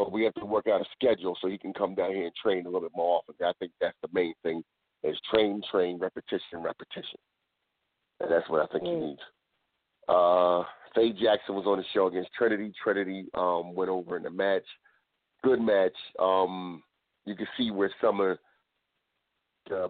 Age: 40-59